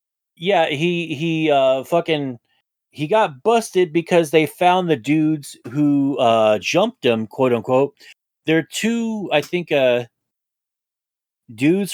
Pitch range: 130-170 Hz